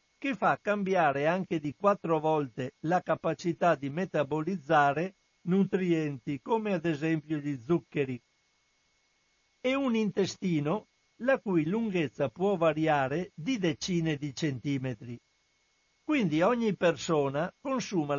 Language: Italian